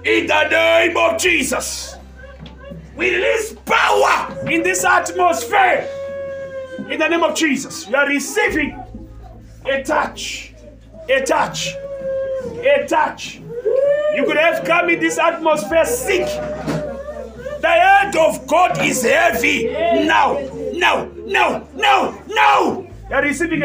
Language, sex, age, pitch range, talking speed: English, male, 40-59, 270-335 Hz, 115 wpm